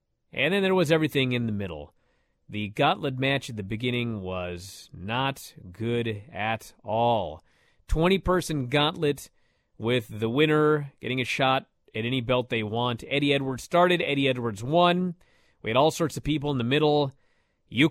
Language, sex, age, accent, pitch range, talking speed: English, male, 40-59, American, 120-190 Hz, 160 wpm